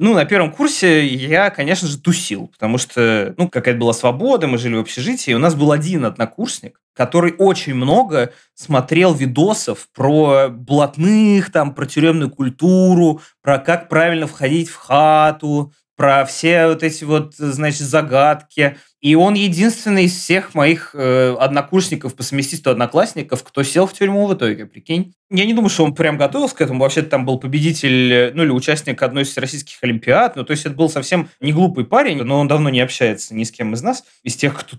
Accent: native